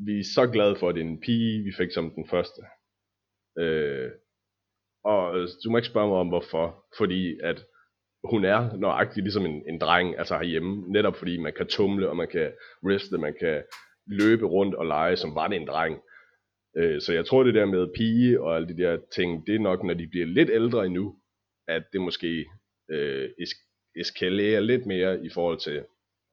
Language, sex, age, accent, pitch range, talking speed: Danish, male, 30-49, native, 85-105 Hz, 200 wpm